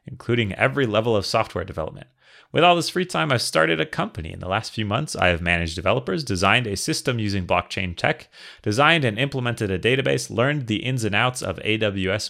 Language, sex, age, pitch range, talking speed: English, male, 30-49, 95-130 Hz, 205 wpm